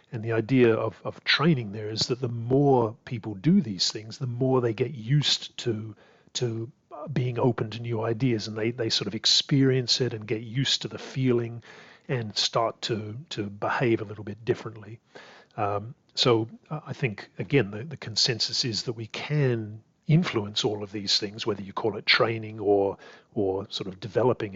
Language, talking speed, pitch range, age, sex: English, 185 wpm, 105-130 Hz, 50-69, male